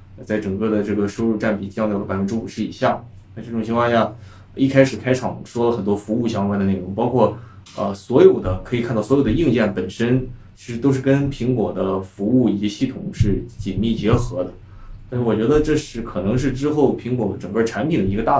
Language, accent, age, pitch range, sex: Chinese, native, 20-39, 100-125 Hz, male